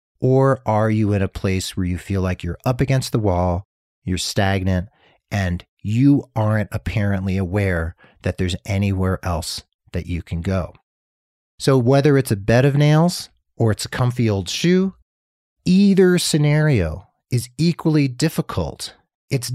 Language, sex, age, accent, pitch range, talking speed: English, male, 40-59, American, 95-130 Hz, 150 wpm